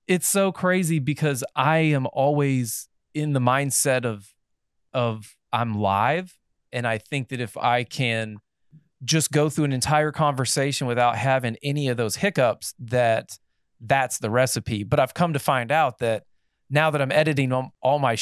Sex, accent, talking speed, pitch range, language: male, American, 165 wpm, 115-150 Hz, English